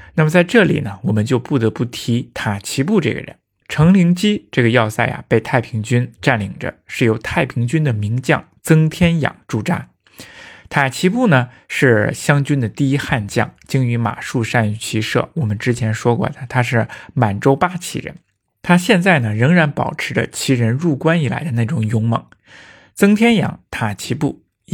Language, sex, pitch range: Chinese, male, 115-150 Hz